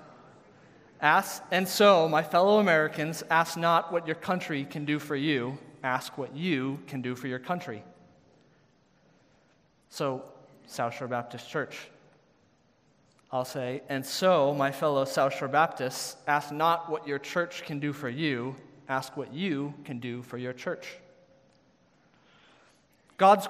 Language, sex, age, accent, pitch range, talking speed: English, male, 30-49, American, 135-165 Hz, 140 wpm